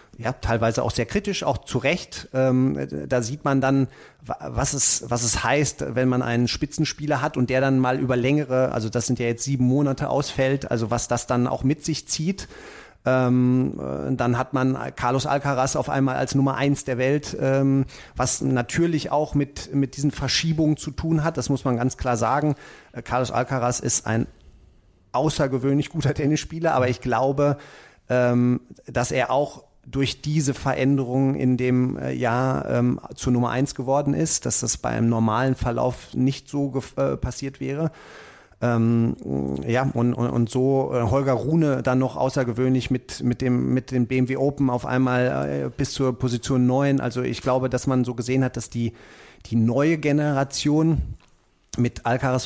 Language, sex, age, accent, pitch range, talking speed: German, male, 40-59, German, 120-140 Hz, 170 wpm